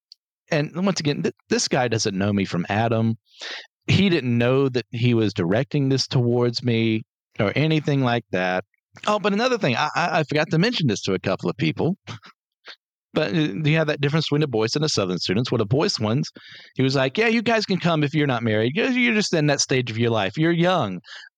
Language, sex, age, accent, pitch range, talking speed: English, male, 40-59, American, 110-160 Hz, 220 wpm